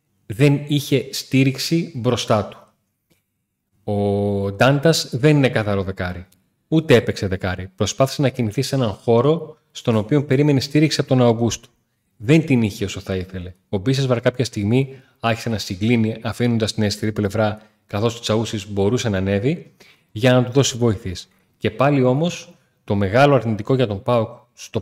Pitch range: 105-135 Hz